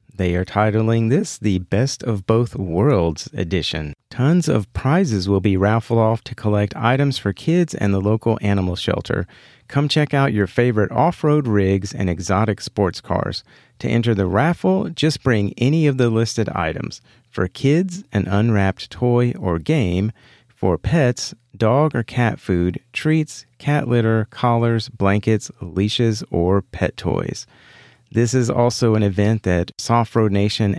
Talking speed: 160 wpm